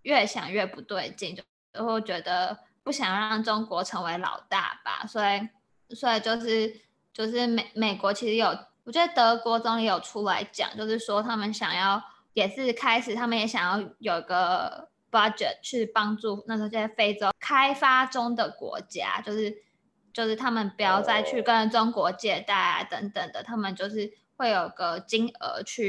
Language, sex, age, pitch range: Chinese, female, 10-29, 205-230 Hz